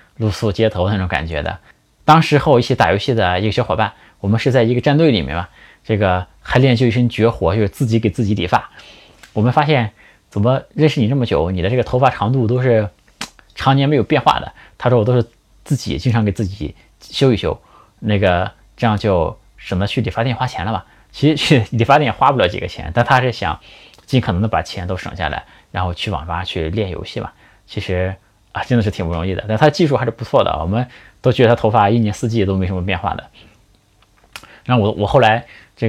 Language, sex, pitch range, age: Chinese, male, 95-120 Hz, 20-39